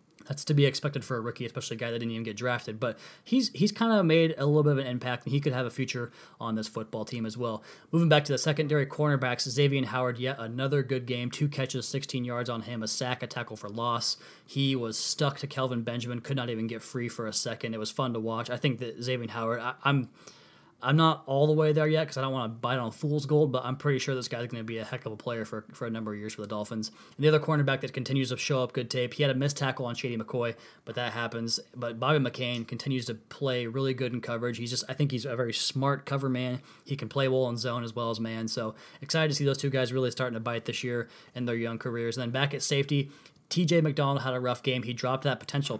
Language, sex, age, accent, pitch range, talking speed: English, male, 20-39, American, 120-140 Hz, 280 wpm